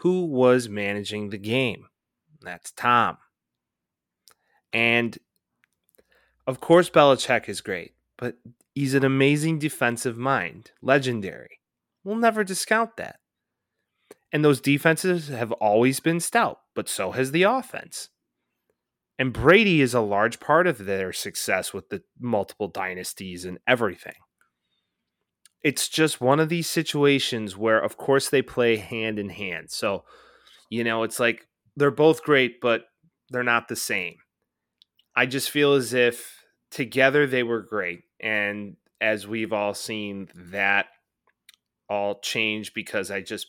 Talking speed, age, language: 135 wpm, 30-49, English